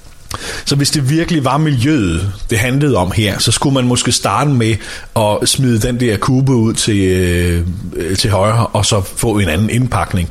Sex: male